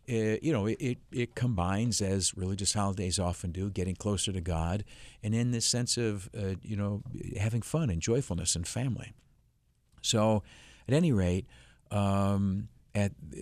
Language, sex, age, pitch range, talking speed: English, male, 50-69, 95-115 Hz, 155 wpm